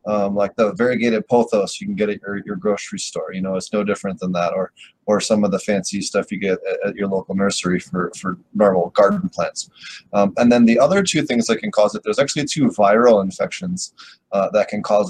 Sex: male